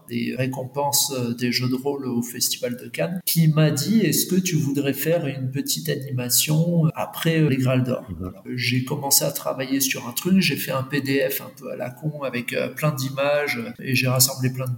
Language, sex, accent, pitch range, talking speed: French, male, French, 130-160 Hz, 205 wpm